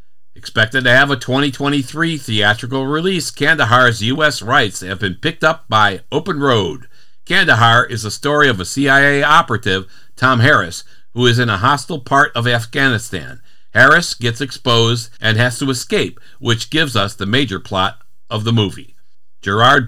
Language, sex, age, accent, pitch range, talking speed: English, male, 60-79, American, 110-145 Hz, 155 wpm